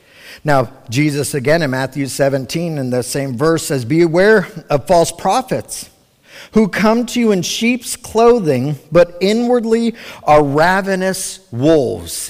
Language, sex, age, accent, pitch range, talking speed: English, male, 50-69, American, 135-190 Hz, 135 wpm